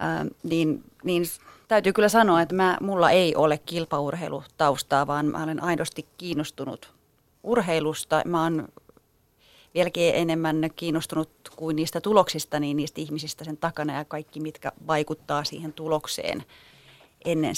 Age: 30-49